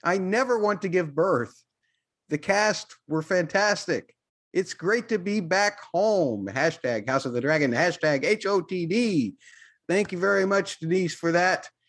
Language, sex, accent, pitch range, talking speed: English, male, American, 135-205 Hz, 150 wpm